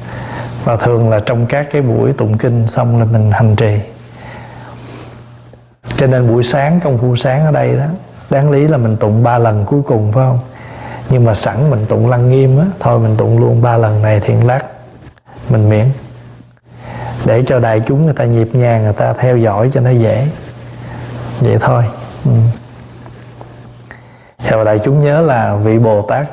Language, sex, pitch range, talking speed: Vietnamese, male, 115-130 Hz, 180 wpm